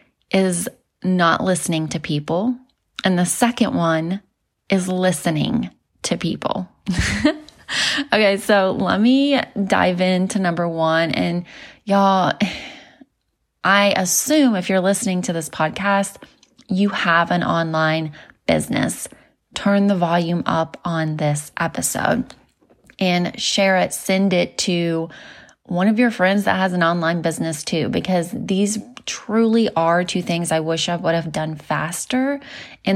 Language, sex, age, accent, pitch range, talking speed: English, female, 20-39, American, 170-205 Hz, 135 wpm